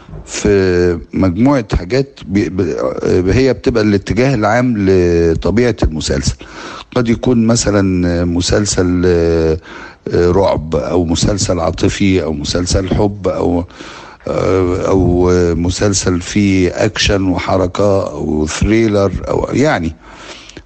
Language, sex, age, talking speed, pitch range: Arabic, male, 60-79, 95 wpm, 90-120 Hz